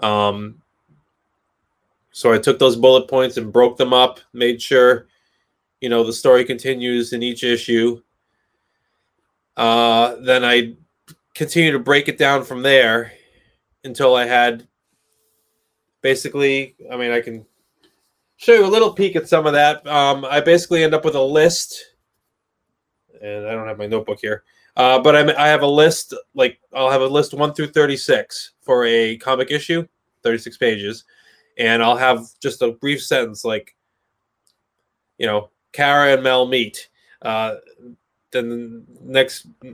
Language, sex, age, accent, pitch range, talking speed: English, male, 20-39, American, 120-145 Hz, 155 wpm